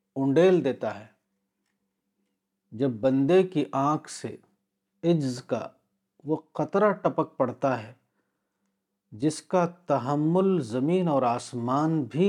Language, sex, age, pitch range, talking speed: Urdu, male, 50-69, 100-155 Hz, 105 wpm